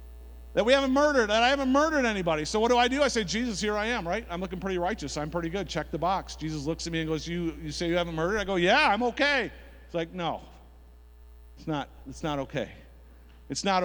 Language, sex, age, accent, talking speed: English, male, 50-69, American, 250 wpm